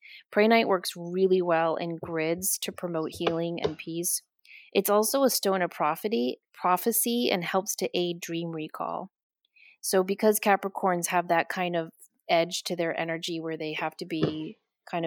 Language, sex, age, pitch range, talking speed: English, female, 30-49, 165-185 Hz, 165 wpm